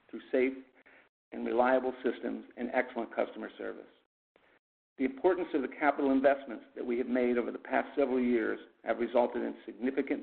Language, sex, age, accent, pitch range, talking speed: English, male, 50-69, American, 120-140 Hz, 165 wpm